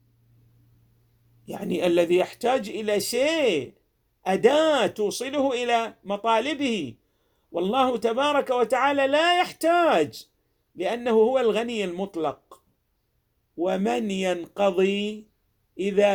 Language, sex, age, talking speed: Arabic, male, 50-69, 80 wpm